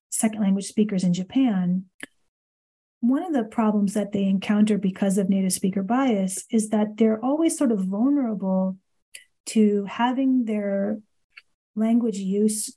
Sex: female